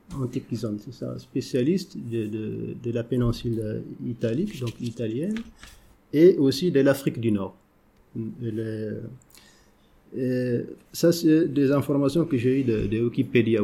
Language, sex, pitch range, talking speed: English, male, 110-140 Hz, 135 wpm